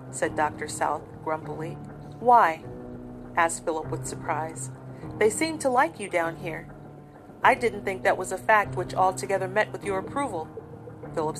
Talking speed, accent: 160 wpm, American